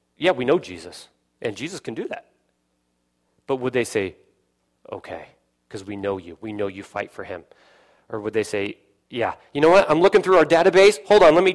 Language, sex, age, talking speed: English, male, 30-49, 215 wpm